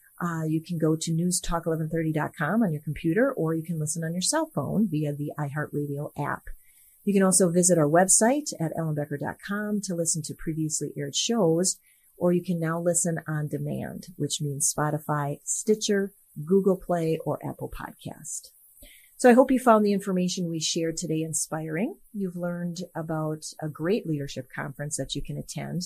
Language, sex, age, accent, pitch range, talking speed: English, female, 40-59, American, 150-185 Hz, 170 wpm